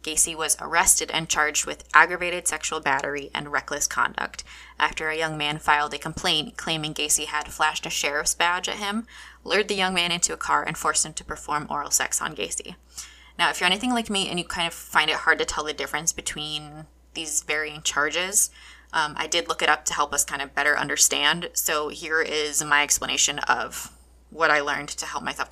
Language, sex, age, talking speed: English, female, 20-39, 210 wpm